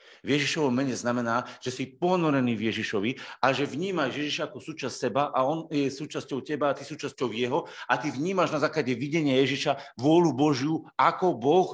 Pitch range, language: 115-155 Hz, Slovak